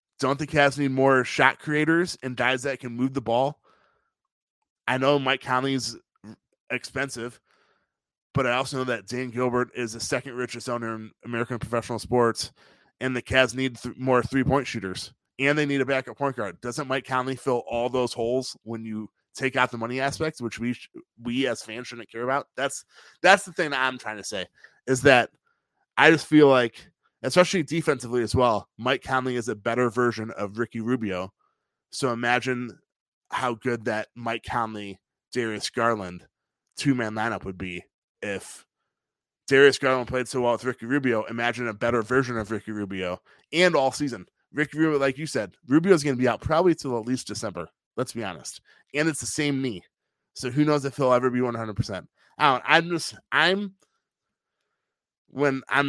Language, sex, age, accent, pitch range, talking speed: English, male, 20-39, American, 115-140 Hz, 185 wpm